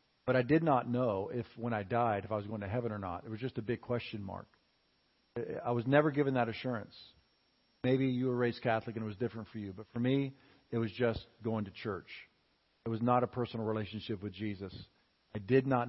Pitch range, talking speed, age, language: 105-125 Hz, 230 wpm, 50-69, English